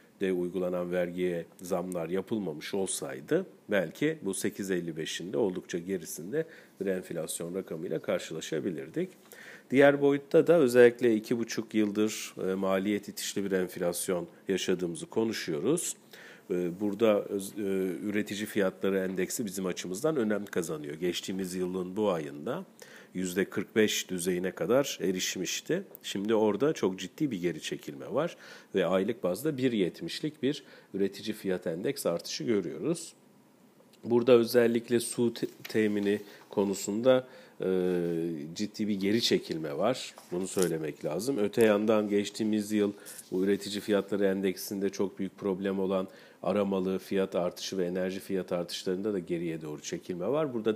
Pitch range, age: 95-110 Hz, 50-69